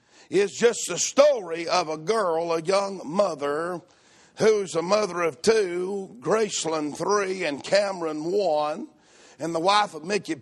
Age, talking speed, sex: 50-69, 145 wpm, male